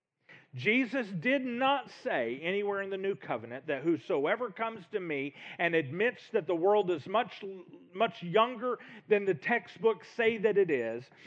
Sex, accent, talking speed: male, American, 160 wpm